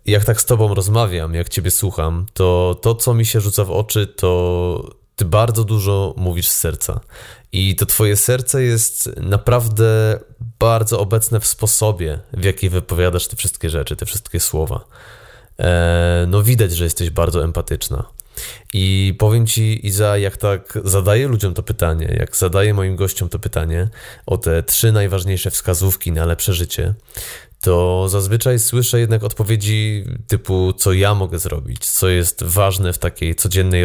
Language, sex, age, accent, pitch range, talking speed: Polish, male, 20-39, native, 90-110 Hz, 155 wpm